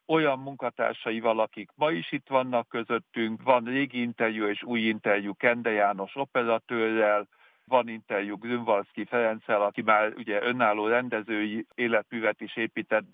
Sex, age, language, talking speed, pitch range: male, 60-79, Hungarian, 135 wpm, 110-130 Hz